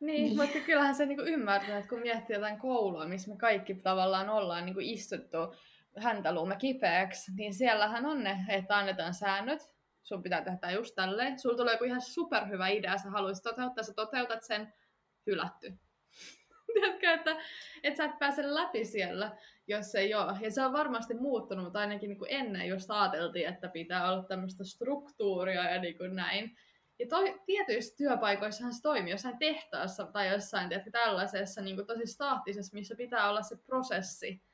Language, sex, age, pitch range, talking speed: Finnish, female, 20-39, 195-260 Hz, 165 wpm